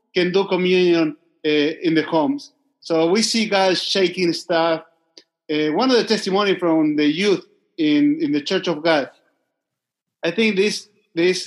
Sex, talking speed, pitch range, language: male, 160 wpm, 165-220 Hz, English